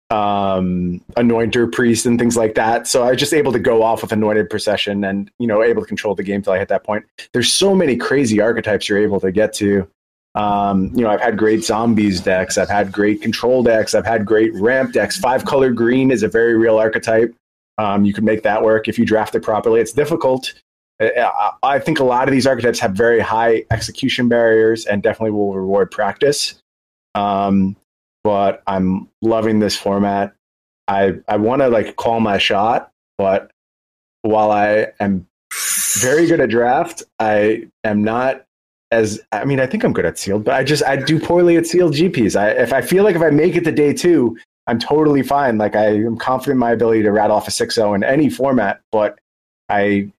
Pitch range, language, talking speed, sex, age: 100-125 Hz, English, 205 wpm, male, 30-49